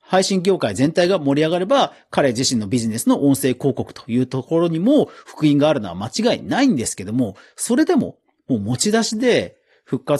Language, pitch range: Japanese, 115-190 Hz